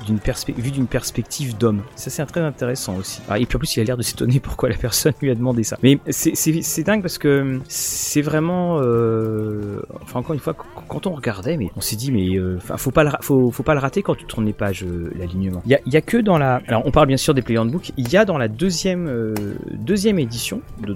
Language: French